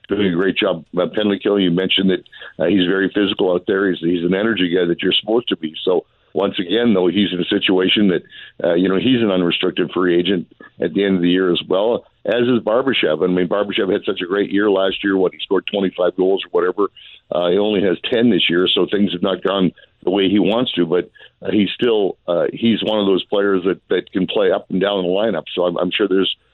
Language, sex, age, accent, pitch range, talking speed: English, male, 60-79, American, 90-105 Hz, 255 wpm